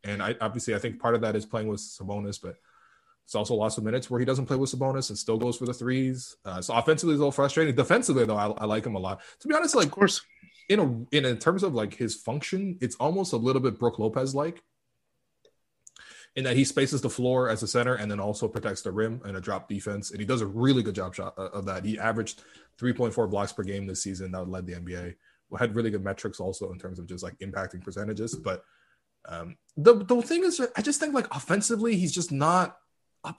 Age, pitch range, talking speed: 20-39, 105-150 Hz, 245 wpm